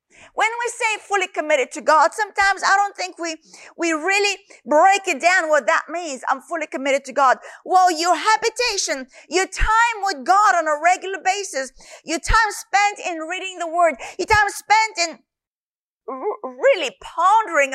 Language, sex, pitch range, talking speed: English, female, 320-405 Hz, 165 wpm